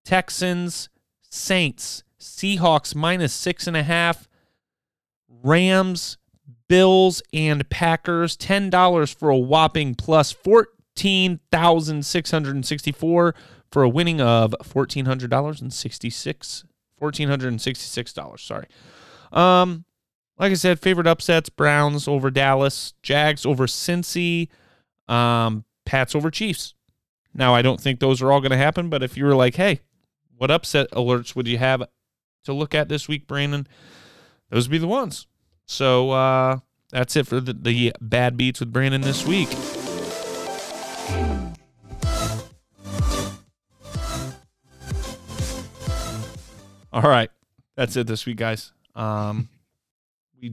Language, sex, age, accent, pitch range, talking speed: English, male, 30-49, American, 120-160 Hz, 125 wpm